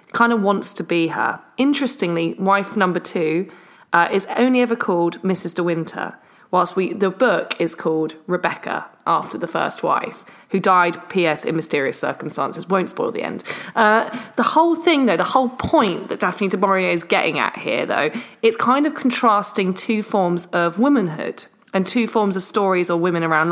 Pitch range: 175-225 Hz